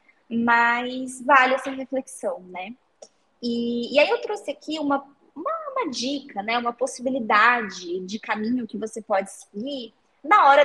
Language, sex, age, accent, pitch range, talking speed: Portuguese, female, 20-39, Brazilian, 225-280 Hz, 145 wpm